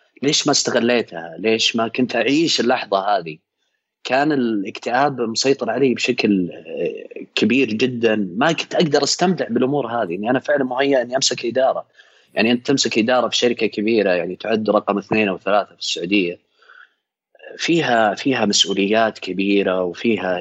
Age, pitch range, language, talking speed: 30-49, 105-155 Hz, Arabic, 145 wpm